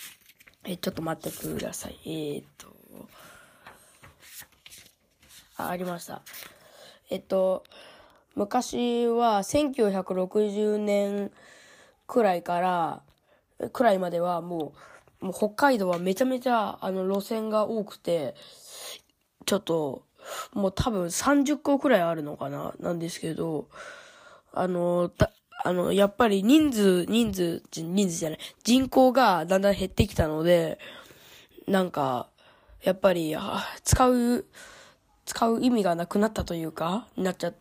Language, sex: Japanese, female